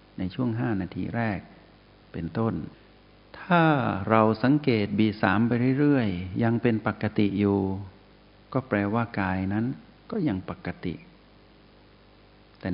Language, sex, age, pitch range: Thai, male, 60-79, 95-115 Hz